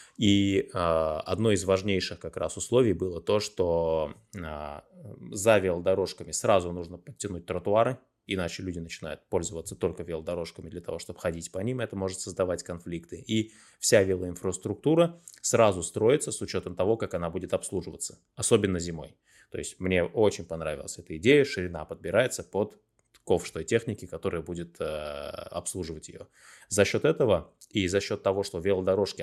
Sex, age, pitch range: male, 20-39, 85-105 Hz